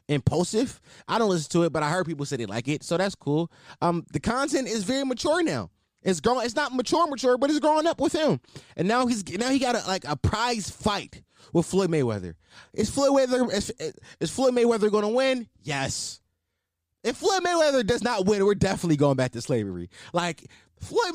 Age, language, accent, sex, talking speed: 20-39, English, American, male, 210 wpm